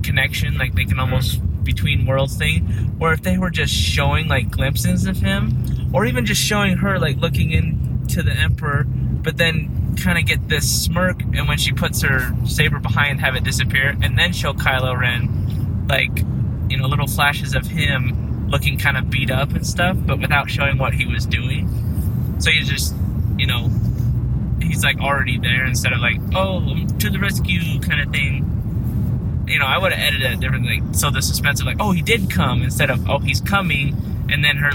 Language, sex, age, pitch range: English, male, 20-39, 100-120 Hz